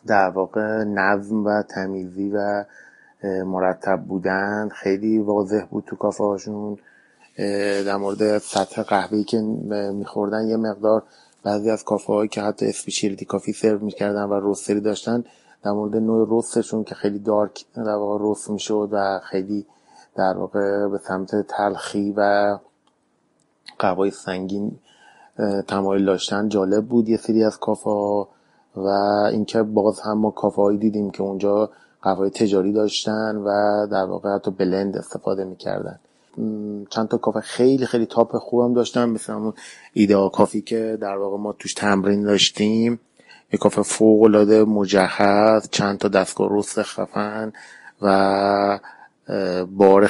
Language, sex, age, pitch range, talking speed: Persian, male, 30-49, 100-110 Hz, 130 wpm